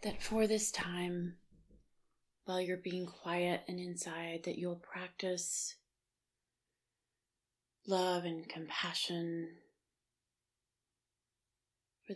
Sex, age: female, 30-49